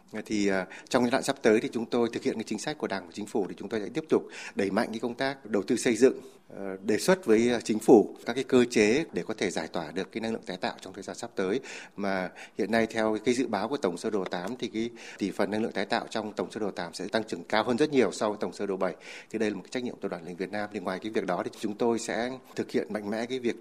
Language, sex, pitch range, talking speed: Vietnamese, male, 105-125 Hz, 315 wpm